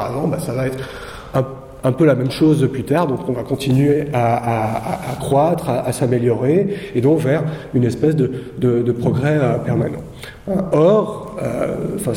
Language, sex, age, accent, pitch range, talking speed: French, male, 40-59, French, 125-150 Hz, 180 wpm